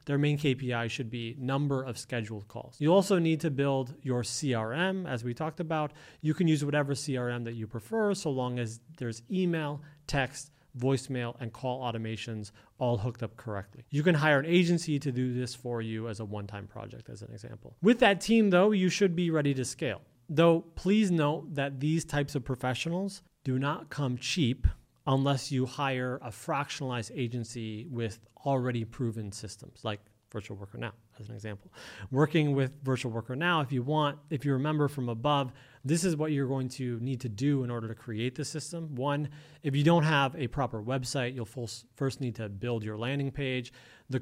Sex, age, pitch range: male, 30-49, 120-150 Hz